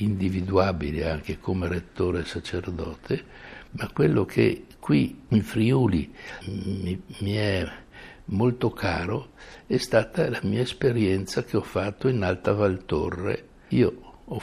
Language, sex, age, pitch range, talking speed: Italian, male, 60-79, 90-110 Hz, 115 wpm